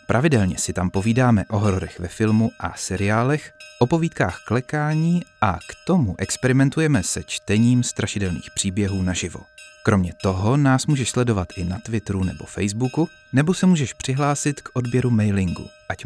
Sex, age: male, 30-49